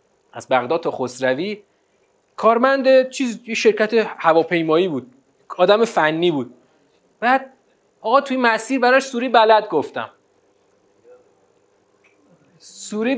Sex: male